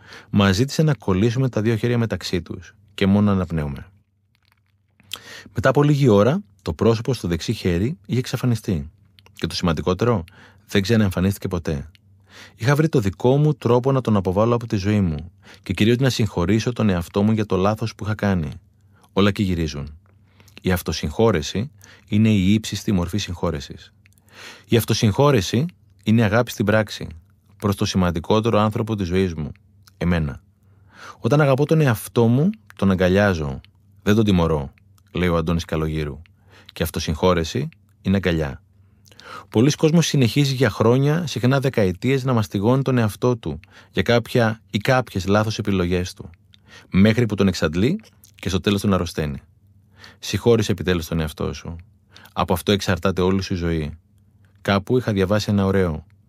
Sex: male